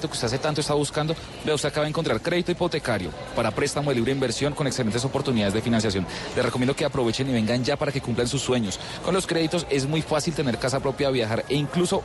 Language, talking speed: Spanish, 235 wpm